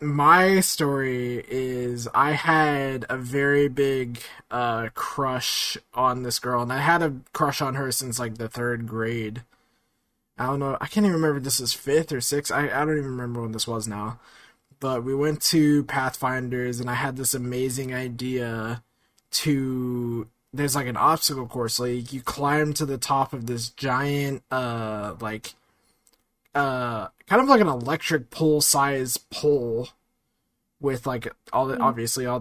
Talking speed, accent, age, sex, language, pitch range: 165 wpm, American, 20-39, male, English, 120-145 Hz